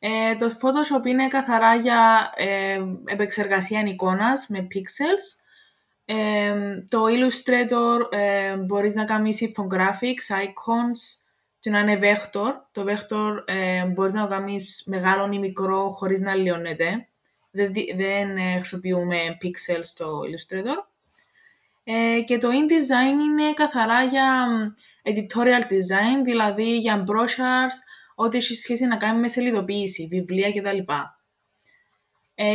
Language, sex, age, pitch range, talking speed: Greek, female, 20-39, 190-235 Hz, 120 wpm